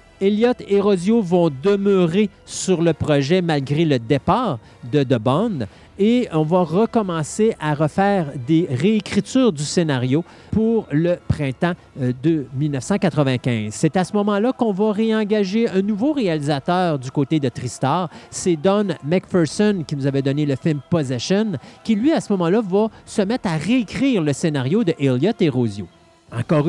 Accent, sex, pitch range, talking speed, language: Canadian, male, 150-215 Hz, 155 wpm, French